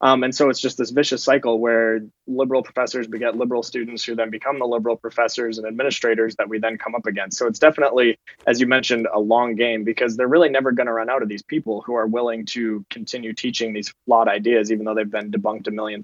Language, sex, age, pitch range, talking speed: English, male, 20-39, 110-130 Hz, 235 wpm